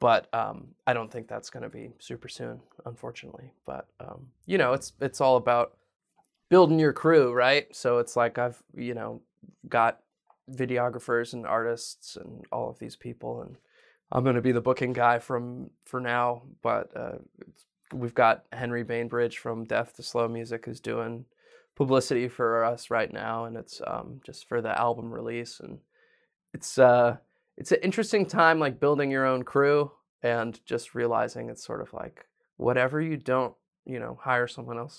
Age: 20-39